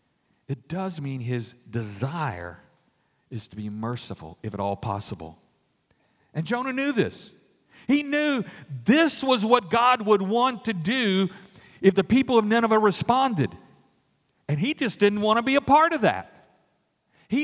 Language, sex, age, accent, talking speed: English, male, 50-69, American, 155 wpm